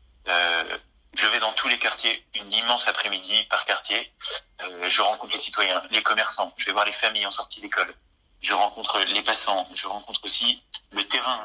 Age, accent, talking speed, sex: 30-49, French, 190 wpm, male